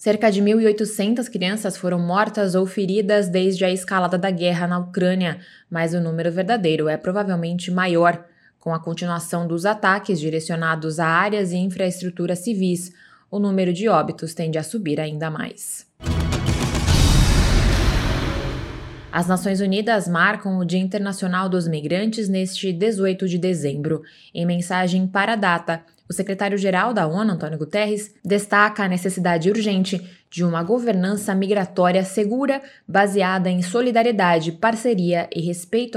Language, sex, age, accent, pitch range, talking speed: Portuguese, female, 20-39, Brazilian, 175-205 Hz, 135 wpm